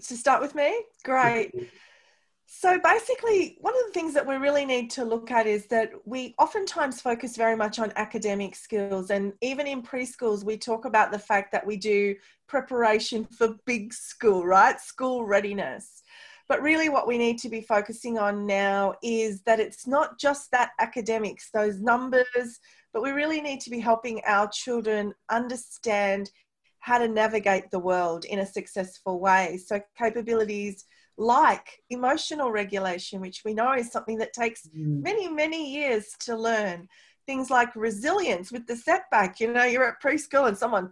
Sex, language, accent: female, English, Australian